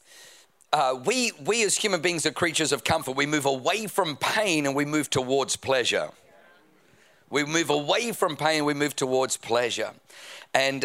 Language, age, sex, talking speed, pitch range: English, 50-69, male, 170 wpm, 140-170 Hz